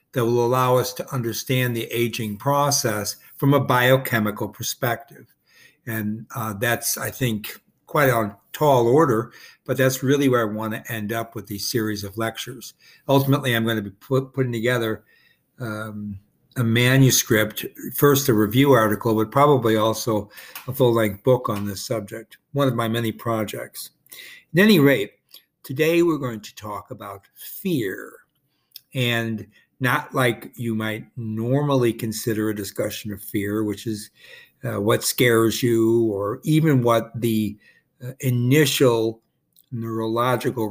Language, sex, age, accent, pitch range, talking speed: English, male, 60-79, American, 110-130 Hz, 145 wpm